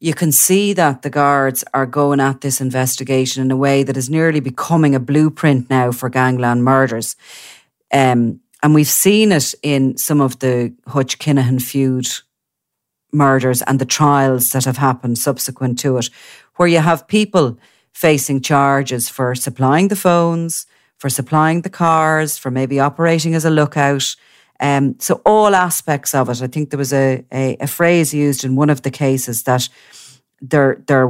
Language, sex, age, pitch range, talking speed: English, female, 40-59, 130-150 Hz, 170 wpm